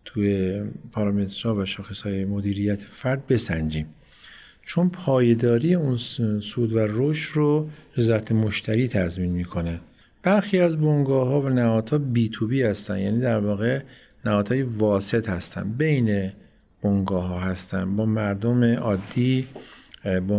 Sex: male